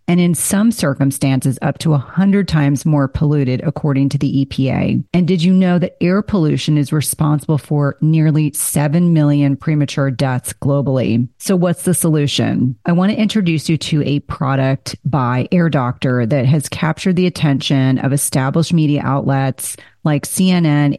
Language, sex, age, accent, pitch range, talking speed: English, female, 40-59, American, 135-170 Hz, 160 wpm